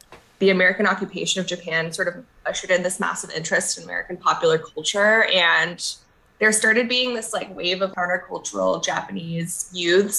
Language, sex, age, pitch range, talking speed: English, female, 10-29, 170-195 Hz, 160 wpm